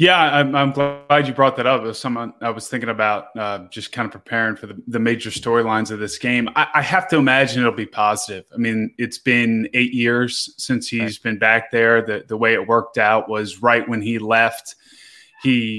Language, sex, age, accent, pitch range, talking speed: English, male, 20-39, American, 110-125 Hz, 225 wpm